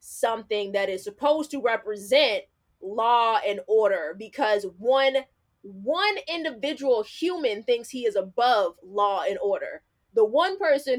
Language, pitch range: English, 210-295 Hz